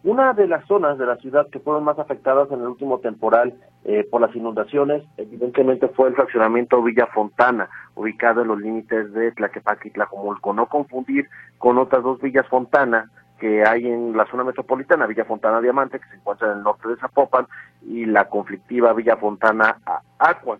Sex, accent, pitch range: male, Mexican, 105-135 Hz